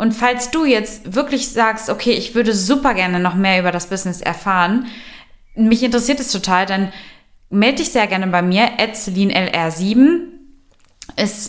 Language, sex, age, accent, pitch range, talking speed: German, female, 20-39, German, 190-255 Hz, 160 wpm